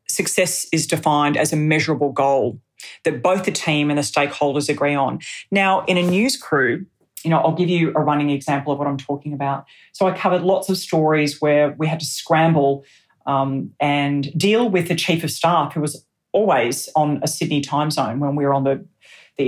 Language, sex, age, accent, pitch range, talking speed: English, female, 30-49, Australian, 140-170 Hz, 205 wpm